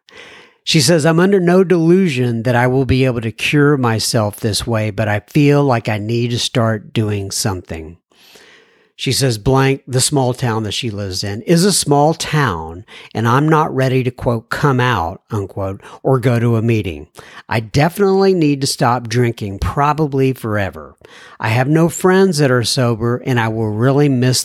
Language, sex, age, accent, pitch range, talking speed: English, male, 60-79, American, 110-145 Hz, 180 wpm